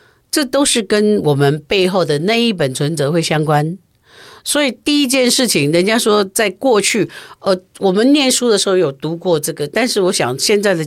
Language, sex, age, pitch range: Chinese, female, 50-69, 155-230 Hz